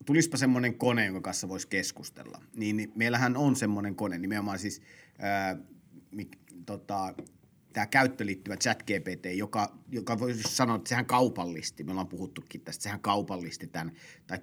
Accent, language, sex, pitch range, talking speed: native, Finnish, male, 95-120 Hz, 140 wpm